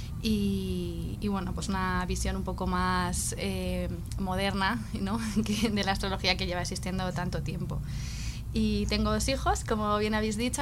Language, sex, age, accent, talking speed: Spanish, female, 20-39, Spanish, 160 wpm